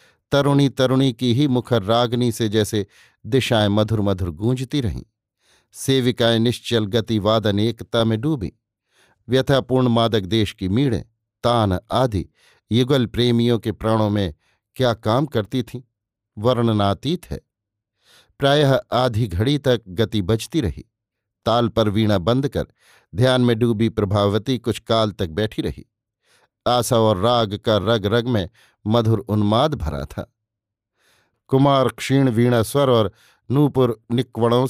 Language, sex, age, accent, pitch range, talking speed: Hindi, male, 50-69, native, 105-125 Hz, 135 wpm